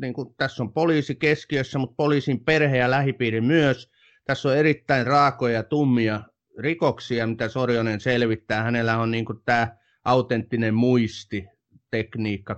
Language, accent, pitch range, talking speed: Finnish, native, 105-125 Hz, 140 wpm